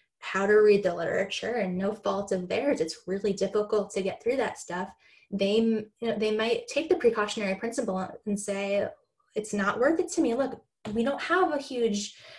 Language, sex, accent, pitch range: English, female, American, 195-235 Hz